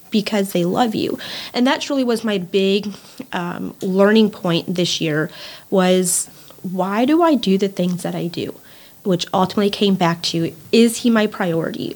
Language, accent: English, American